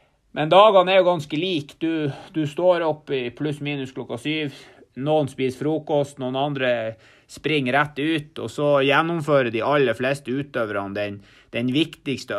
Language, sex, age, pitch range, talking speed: Swedish, male, 30-49, 125-150 Hz, 170 wpm